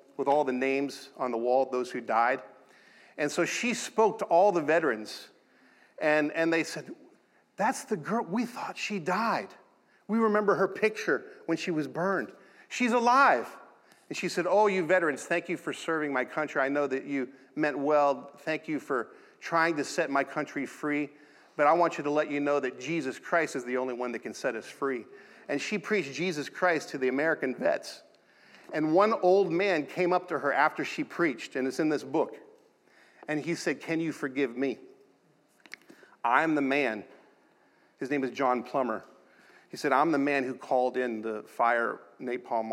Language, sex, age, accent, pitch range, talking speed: English, male, 40-59, American, 135-175 Hz, 190 wpm